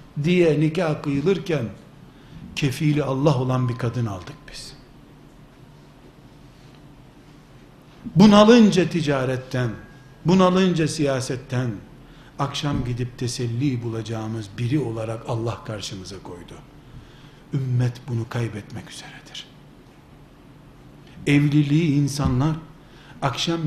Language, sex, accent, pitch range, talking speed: Turkish, male, native, 125-175 Hz, 80 wpm